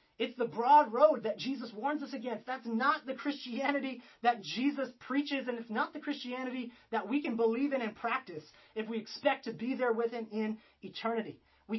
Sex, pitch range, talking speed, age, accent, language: male, 215-285 Hz, 200 wpm, 30-49, American, English